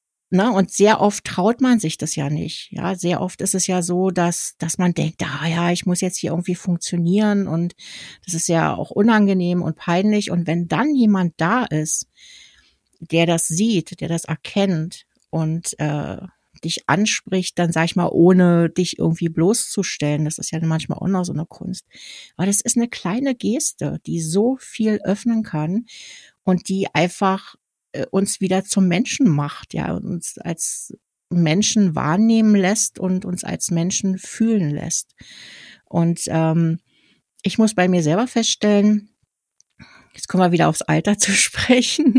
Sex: female